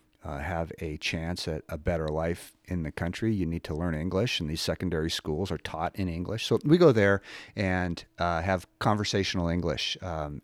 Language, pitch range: English, 80-100 Hz